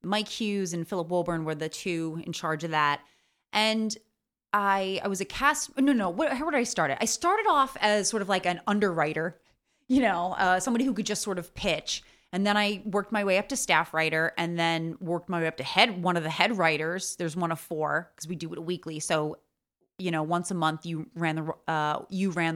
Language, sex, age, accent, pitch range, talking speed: English, female, 30-49, American, 165-215 Hz, 235 wpm